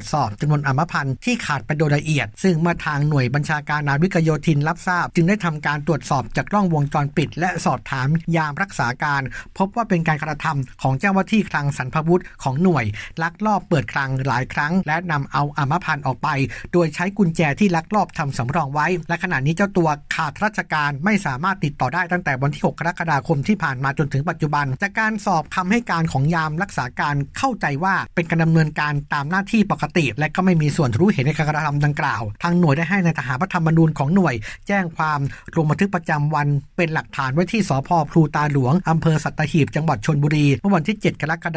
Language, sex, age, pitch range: Thai, male, 60-79, 145-180 Hz